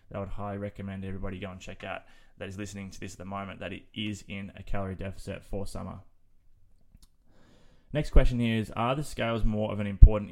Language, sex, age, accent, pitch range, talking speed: English, male, 20-39, Australian, 100-110 Hz, 215 wpm